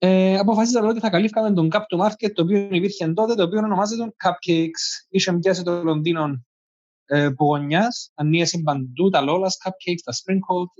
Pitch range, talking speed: 155-215 Hz, 165 wpm